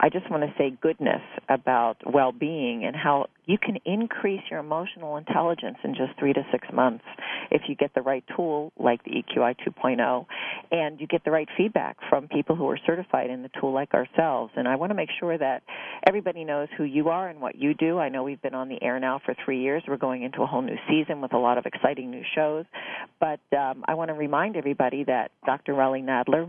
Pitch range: 135-165 Hz